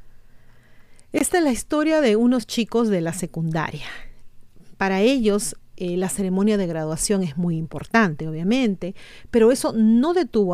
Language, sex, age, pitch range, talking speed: Spanish, female, 40-59, 175-230 Hz, 140 wpm